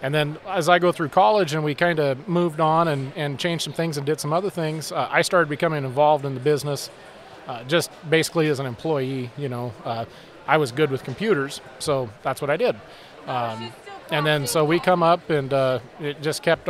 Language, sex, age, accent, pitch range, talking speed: English, male, 30-49, American, 135-160 Hz, 225 wpm